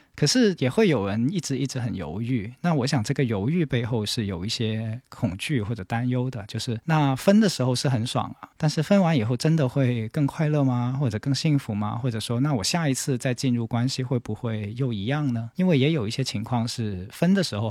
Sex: male